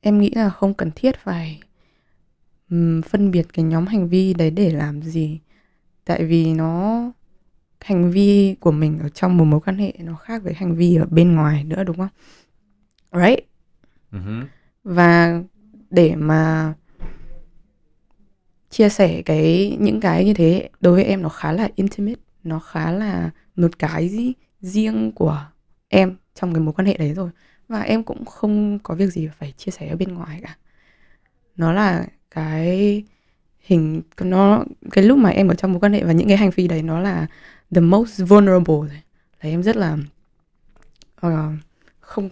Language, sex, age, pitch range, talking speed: Vietnamese, female, 20-39, 160-200 Hz, 170 wpm